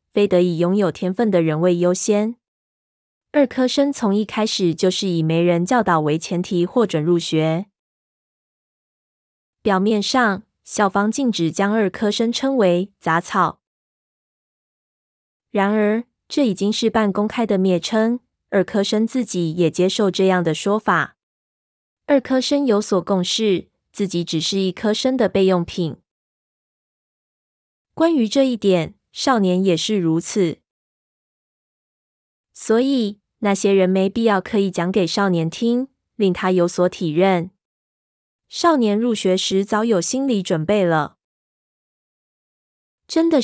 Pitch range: 180-225 Hz